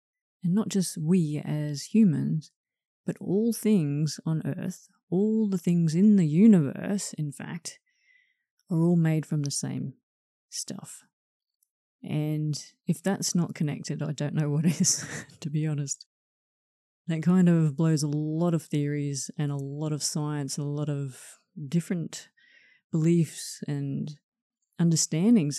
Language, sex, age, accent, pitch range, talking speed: English, female, 30-49, Australian, 150-195 Hz, 140 wpm